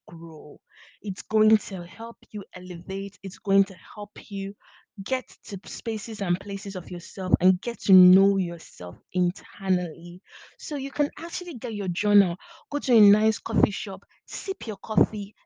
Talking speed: 160 wpm